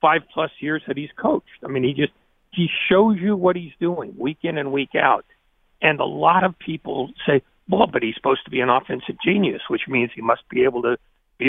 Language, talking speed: English, 230 wpm